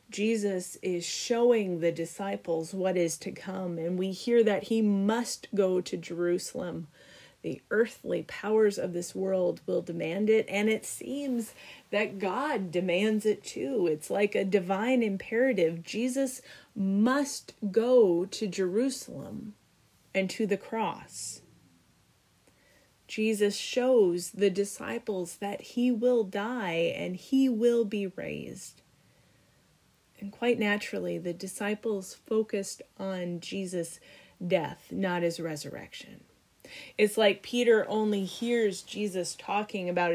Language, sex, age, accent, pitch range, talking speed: English, female, 30-49, American, 185-230 Hz, 120 wpm